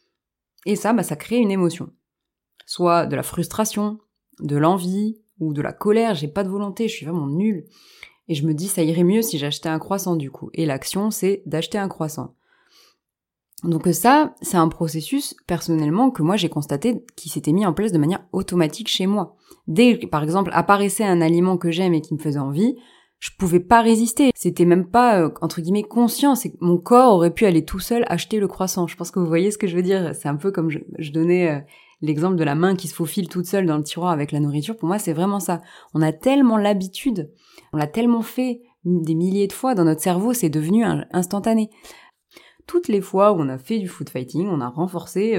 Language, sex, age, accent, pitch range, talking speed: French, female, 20-39, French, 160-210 Hz, 225 wpm